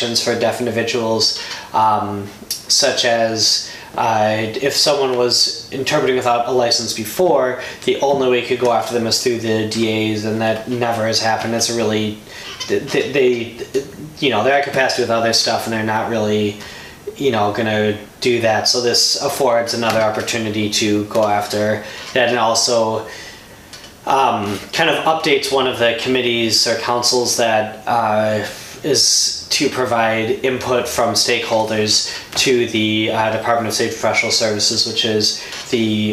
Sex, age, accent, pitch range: male, 10-29, American, 110-120 Hz